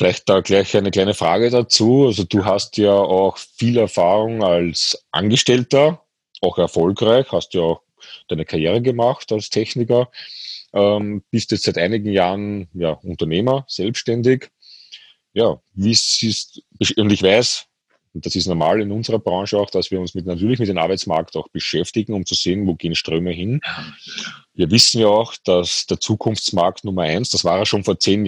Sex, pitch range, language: male, 95-115 Hz, German